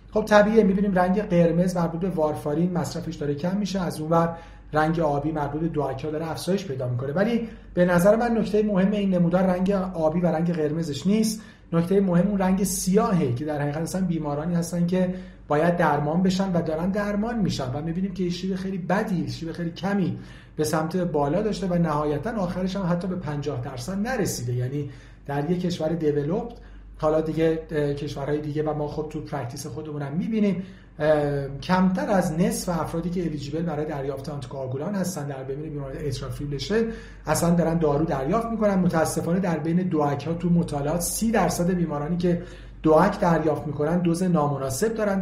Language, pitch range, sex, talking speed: Persian, 150-185 Hz, male, 175 wpm